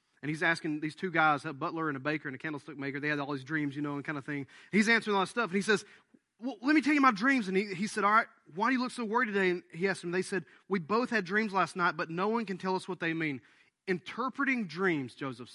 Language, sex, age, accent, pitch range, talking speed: English, male, 30-49, American, 160-210 Hz, 305 wpm